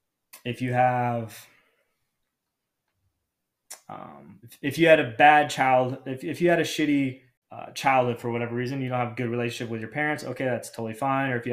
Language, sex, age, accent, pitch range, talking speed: English, male, 20-39, American, 120-140 Hz, 200 wpm